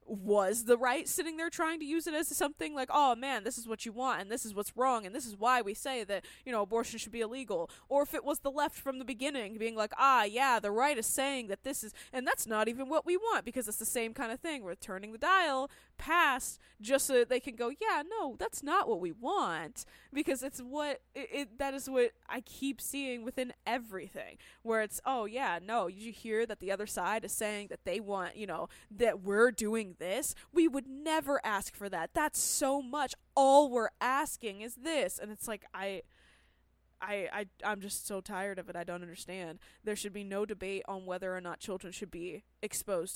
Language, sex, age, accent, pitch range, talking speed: English, female, 20-39, American, 200-275 Hz, 230 wpm